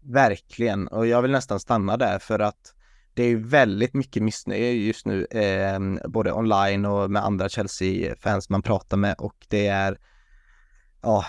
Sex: male